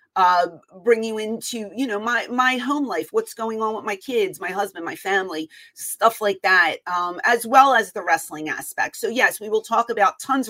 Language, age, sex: English, 30-49, female